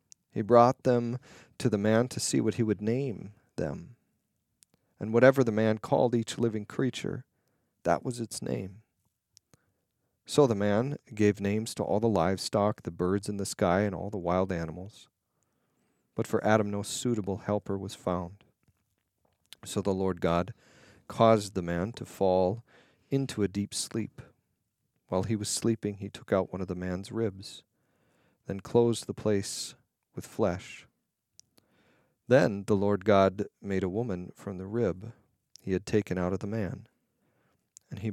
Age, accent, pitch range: 40-59, American, 95-115 Hz